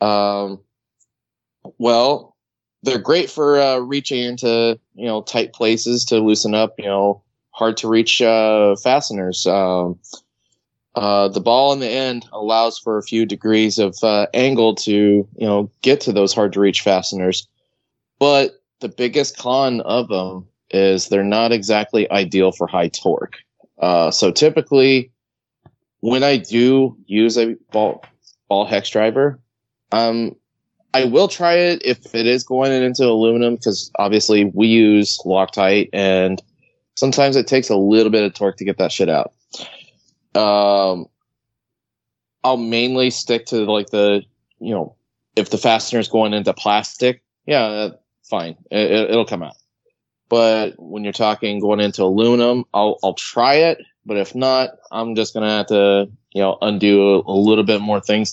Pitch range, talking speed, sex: 100-125 Hz, 160 wpm, male